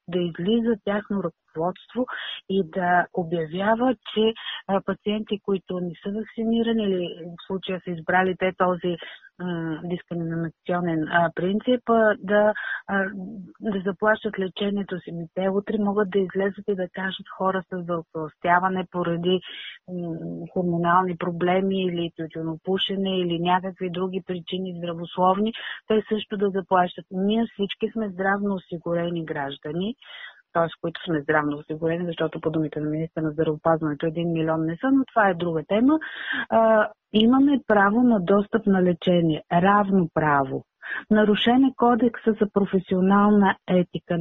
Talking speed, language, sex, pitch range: 125 wpm, Bulgarian, female, 175-210 Hz